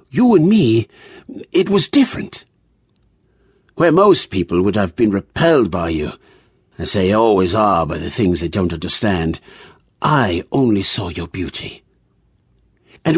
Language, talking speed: English, 140 wpm